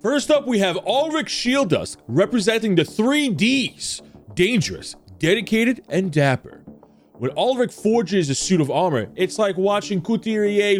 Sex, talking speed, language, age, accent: male, 140 wpm, English, 30-49, American